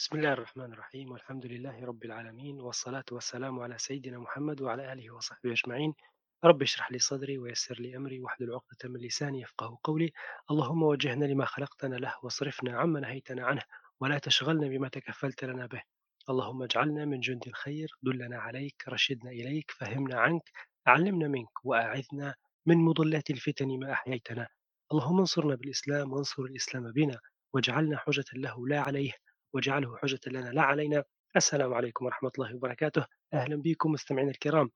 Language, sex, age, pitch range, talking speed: Arabic, male, 30-49, 125-150 Hz, 155 wpm